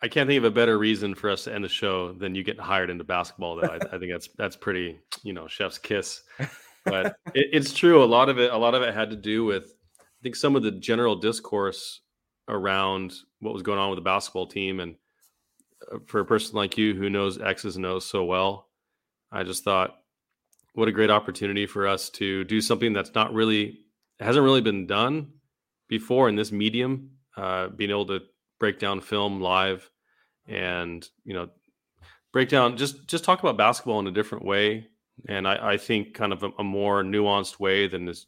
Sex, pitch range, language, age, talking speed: male, 95-110 Hz, English, 30-49, 205 wpm